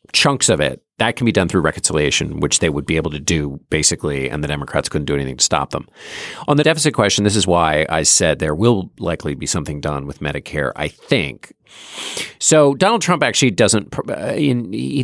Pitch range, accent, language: 85-120 Hz, American, English